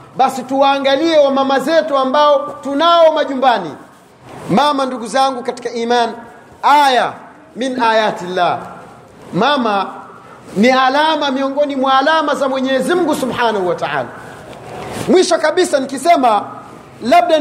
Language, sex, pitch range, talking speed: Swahili, male, 235-310 Hz, 110 wpm